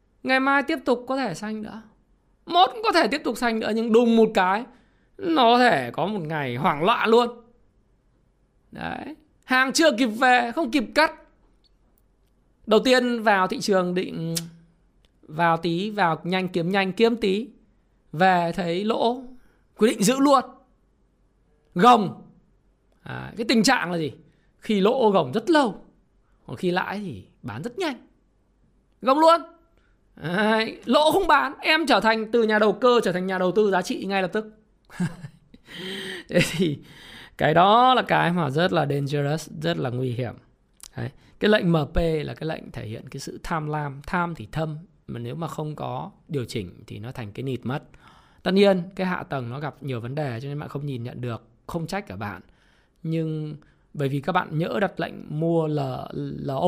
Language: Vietnamese